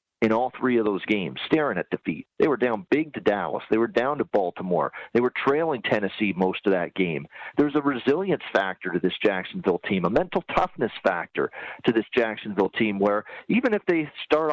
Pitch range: 105-145 Hz